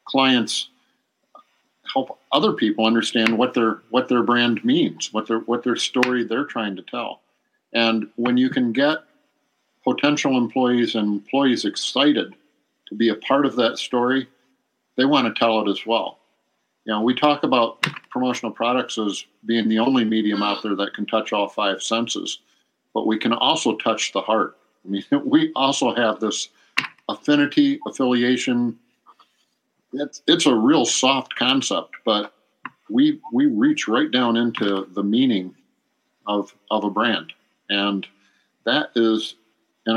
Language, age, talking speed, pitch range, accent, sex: English, 50-69, 155 wpm, 105-130 Hz, American, male